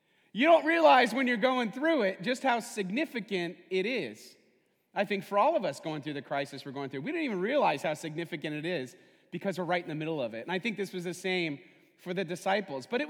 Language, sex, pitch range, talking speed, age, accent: English, male, 175-250 Hz, 250 wpm, 30-49, American